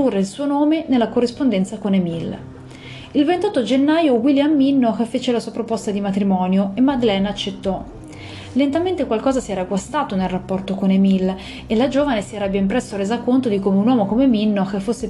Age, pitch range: 30-49, 200-265 Hz